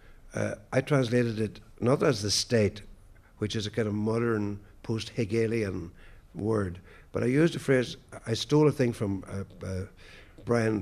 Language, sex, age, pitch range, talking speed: English, male, 60-79, 100-125 Hz, 160 wpm